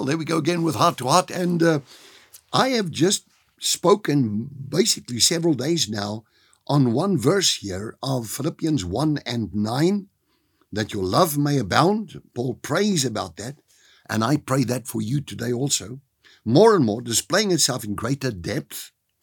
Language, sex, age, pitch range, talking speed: English, male, 60-79, 115-165 Hz, 160 wpm